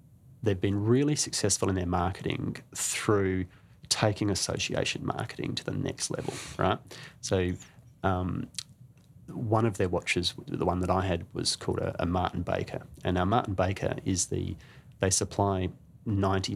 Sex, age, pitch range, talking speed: male, 30-49, 90-110 Hz, 150 wpm